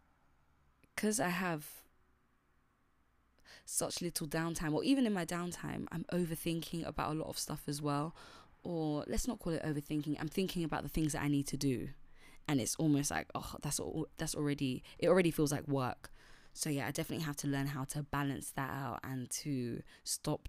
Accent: British